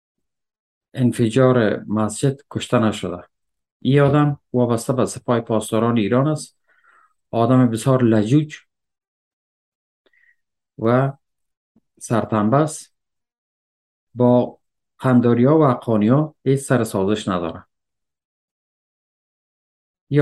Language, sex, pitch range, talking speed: Persian, male, 105-135 Hz, 75 wpm